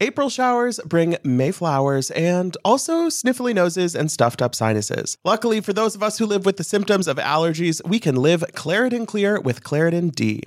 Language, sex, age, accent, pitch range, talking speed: English, male, 30-49, American, 145-195 Hz, 190 wpm